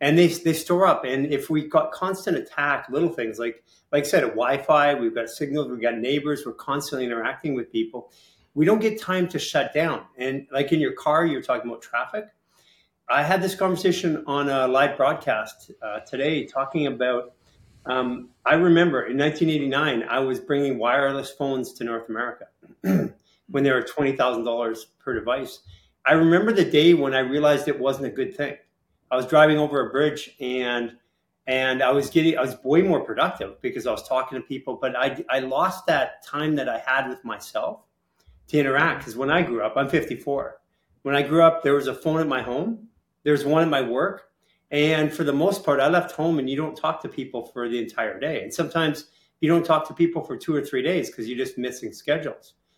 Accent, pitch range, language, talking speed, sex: American, 130-155 Hz, English, 205 wpm, male